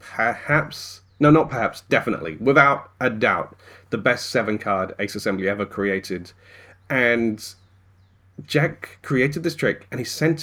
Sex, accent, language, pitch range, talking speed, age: male, British, English, 95-125 Hz, 140 wpm, 40-59